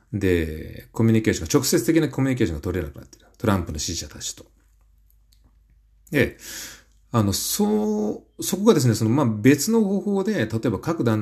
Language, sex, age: Japanese, male, 40-59